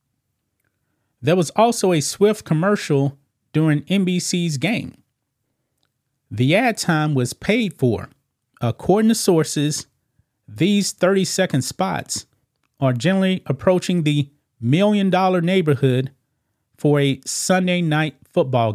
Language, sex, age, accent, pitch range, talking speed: English, male, 30-49, American, 125-175 Hz, 110 wpm